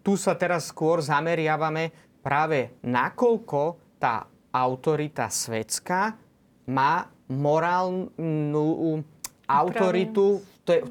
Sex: male